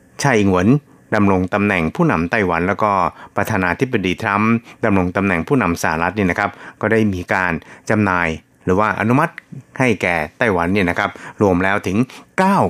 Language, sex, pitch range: Thai, male, 90-110 Hz